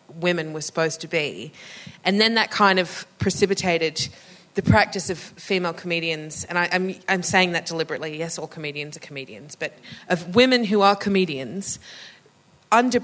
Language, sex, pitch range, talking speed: English, female, 155-190 Hz, 160 wpm